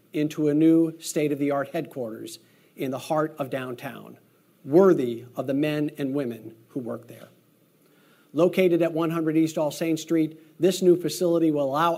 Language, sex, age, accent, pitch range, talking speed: English, male, 40-59, American, 145-175 Hz, 150 wpm